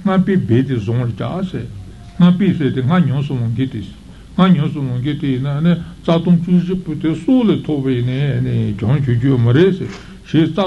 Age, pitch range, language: 60-79, 125-170 Hz, Italian